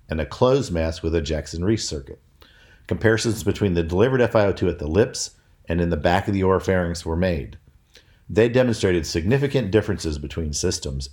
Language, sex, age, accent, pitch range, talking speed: English, male, 50-69, American, 75-95 Hz, 165 wpm